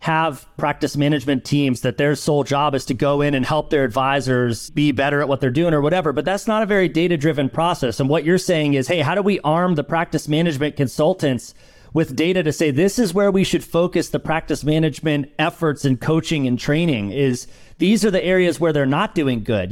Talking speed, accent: 220 wpm, American